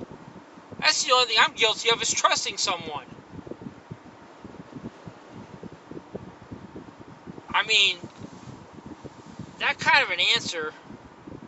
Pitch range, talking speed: 180-235 Hz, 90 wpm